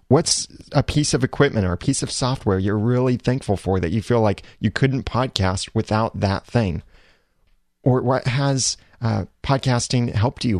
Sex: male